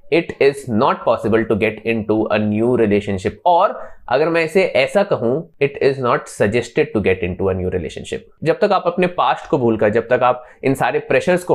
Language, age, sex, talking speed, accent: Hindi, 20-39, male, 210 wpm, native